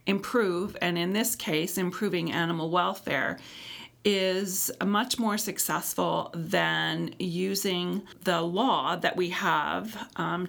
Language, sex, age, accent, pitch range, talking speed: English, female, 40-59, American, 165-210 Hz, 115 wpm